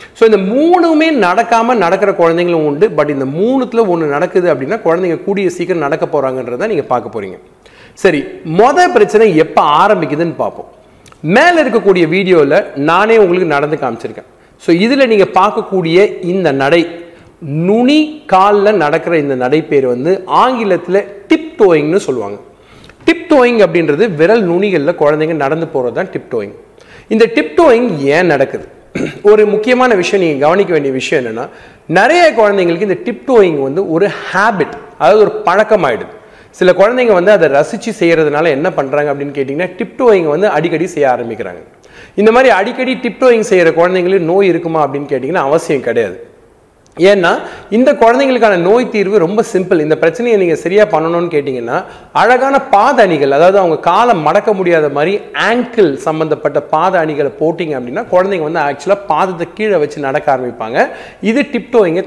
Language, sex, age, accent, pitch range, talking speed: Tamil, male, 40-59, native, 160-230 Hz, 110 wpm